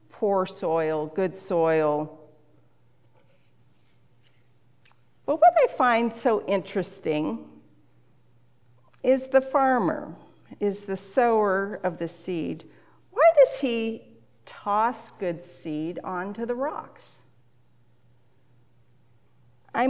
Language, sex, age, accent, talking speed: English, female, 50-69, American, 85 wpm